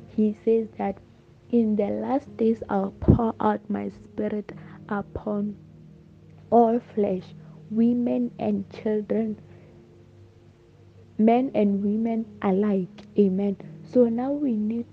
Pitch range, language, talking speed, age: 195-230 Hz, English, 110 wpm, 20-39